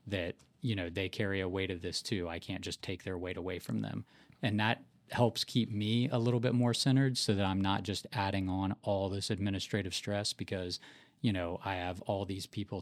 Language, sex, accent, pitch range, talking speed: English, male, American, 95-110 Hz, 225 wpm